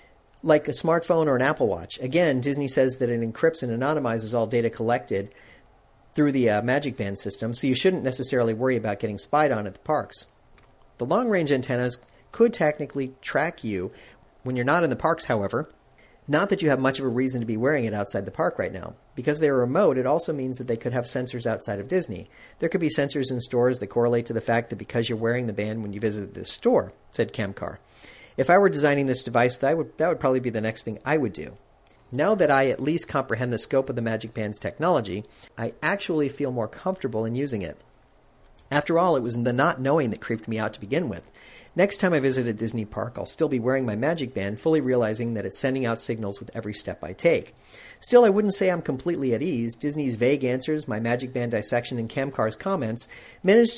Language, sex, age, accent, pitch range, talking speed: English, male, 40-59, American, 115-150 Hz, 230 wpm